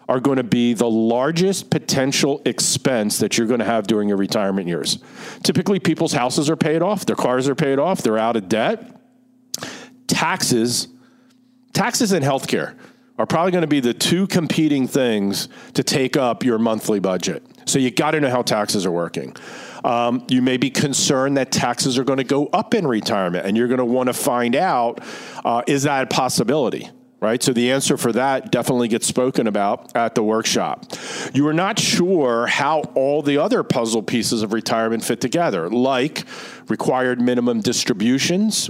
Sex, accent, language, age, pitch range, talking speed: male, American, English, 50-69, 120-165 Hz, 185 wpm